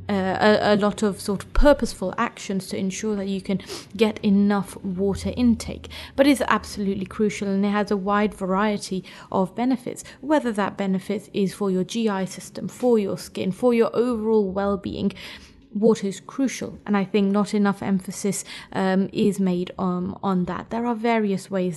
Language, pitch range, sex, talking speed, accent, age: English, 195-230 Hz, female, 175 wpm, British, 30-49